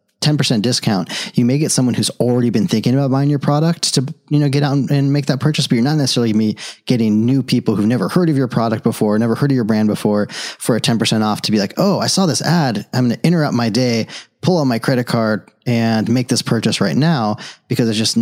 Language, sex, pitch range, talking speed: English, male, 110-135 Hz, 250 wpm